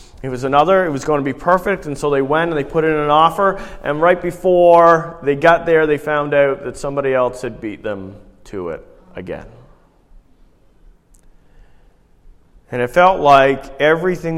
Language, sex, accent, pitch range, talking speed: English, male, American, 120-150 Hz, 175 wpm